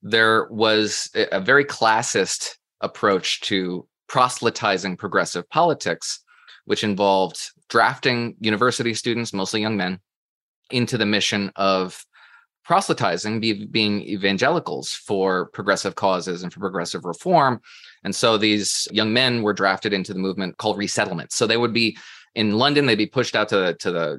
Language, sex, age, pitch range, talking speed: English, male, 30-49, 95-130 Hz, 140 wpm